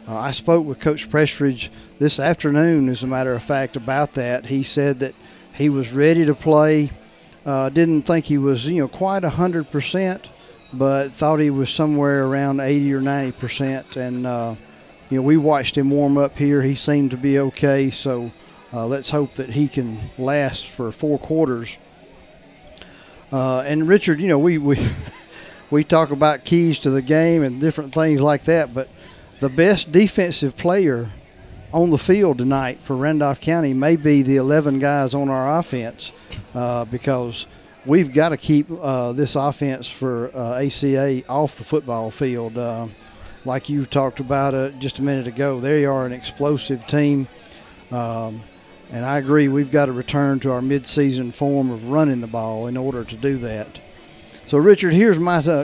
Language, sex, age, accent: English, male, 40-59, American